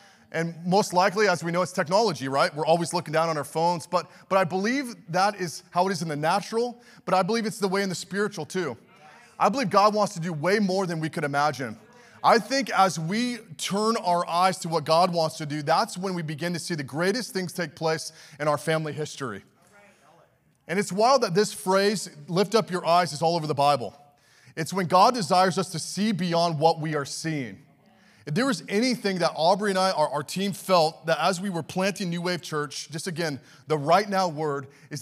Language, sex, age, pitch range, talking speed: English, male, 30-49, 160-200 Hz, 225 wpm